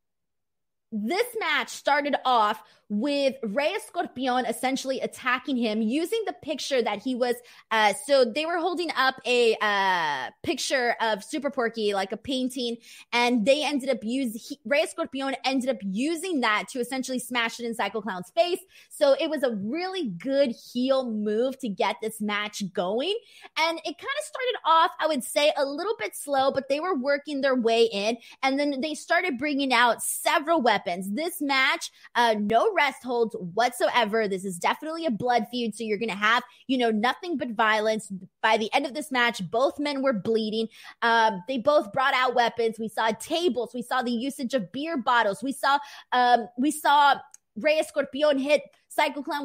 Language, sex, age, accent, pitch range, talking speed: English, female, 20-39, American, 230-295 Hz, 180 wpm